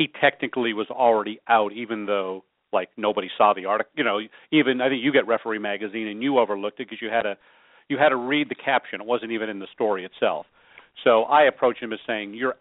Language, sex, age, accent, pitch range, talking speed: English, male, 40-59, American, 105-130 Hz, 235 wpm